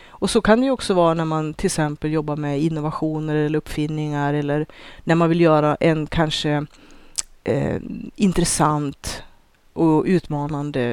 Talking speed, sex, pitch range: 150 wpm, female, 150-180 Hz